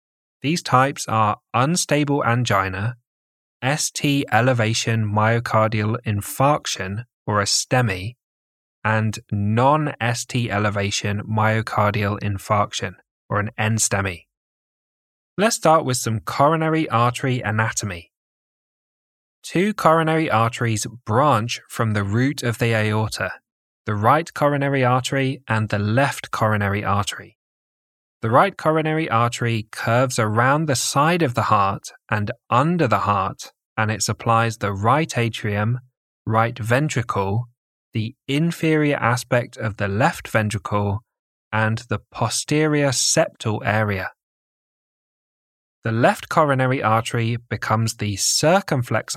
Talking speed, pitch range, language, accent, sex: 105 wpm, 105-135 Hz, English, British, male